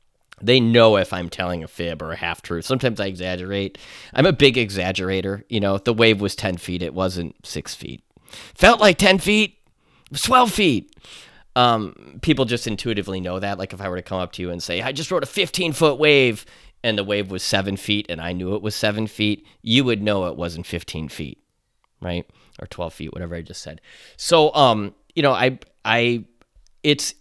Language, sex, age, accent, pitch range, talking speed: English, male, 30-49, American, 95-125 Hz, 210 wpm